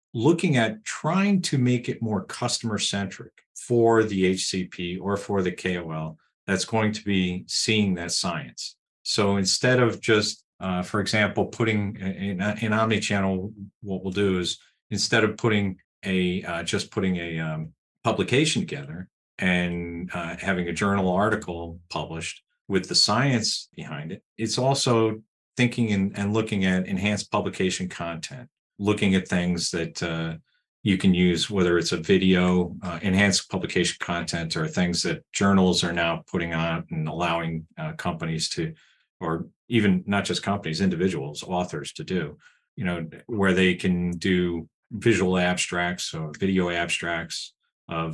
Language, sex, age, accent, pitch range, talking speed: English, male, 40-59, American, 85-105 Hz, 150 wpm